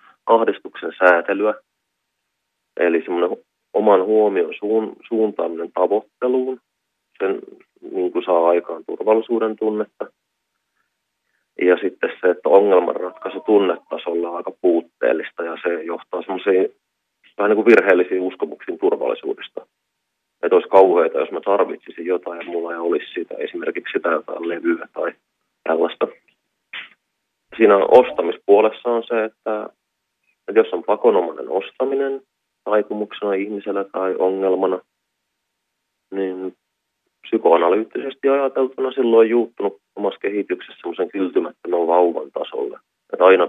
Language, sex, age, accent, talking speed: Finnish, male, 30-49, native, 105 wpm